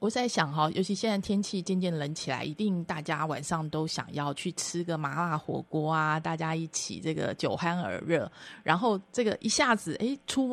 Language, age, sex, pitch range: Chinese, 20-39, female, 165-225 Hz